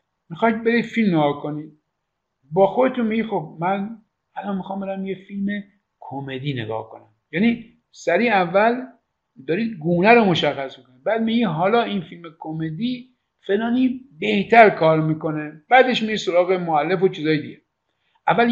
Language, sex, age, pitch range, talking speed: Persian, male, 50-69, 155-220 Hz, 145 wpm